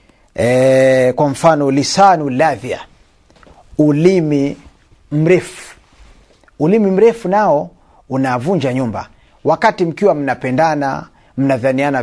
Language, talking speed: Swahili, 80 wpm